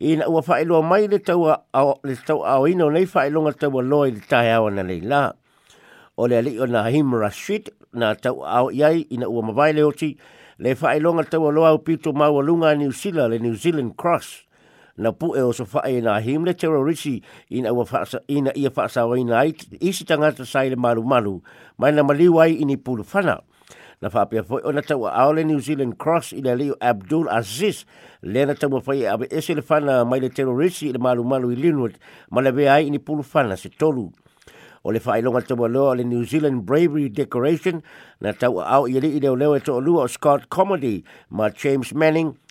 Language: English